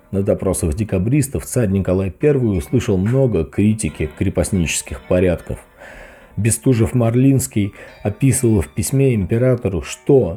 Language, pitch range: Russian, 90-115 Hz